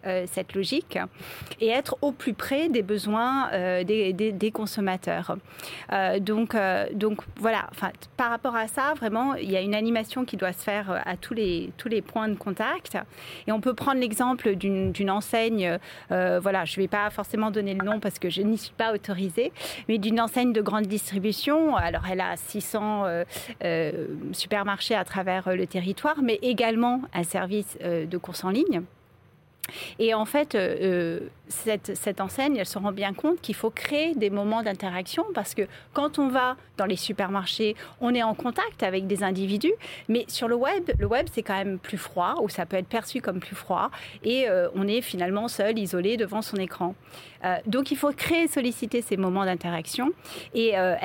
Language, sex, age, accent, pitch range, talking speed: French, female, 30-49, French, 190-230 Hz, 190 wpm